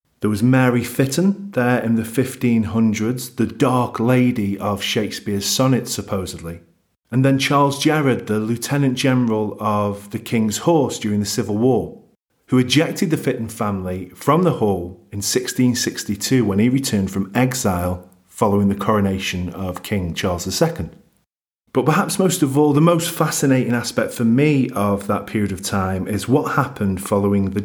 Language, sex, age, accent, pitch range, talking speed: English, male, 40-59, British, 100-130 Hz, 160 wpm